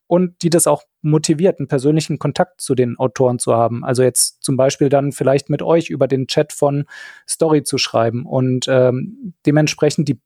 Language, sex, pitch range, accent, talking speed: German, male, 135-155 Hz, German, 185 wpm